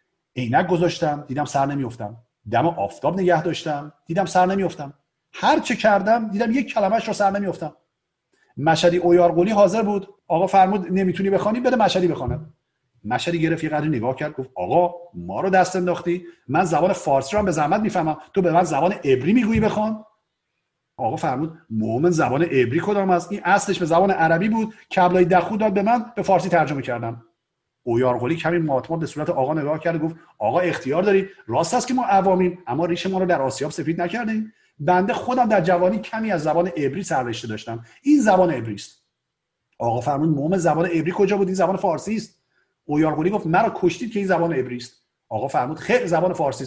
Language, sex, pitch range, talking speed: Persian, male, 150-195 Hz, 185 wpm